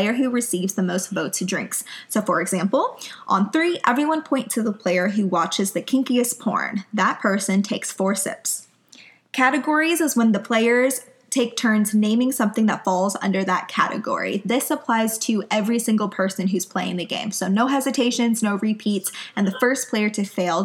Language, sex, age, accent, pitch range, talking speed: English, female, 20-39, American, 195-255 Hz, 180 wpm